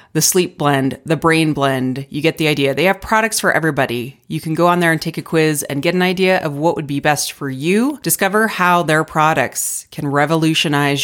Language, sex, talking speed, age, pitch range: English, female, 225 wpm, 30-49, 135-175 Hz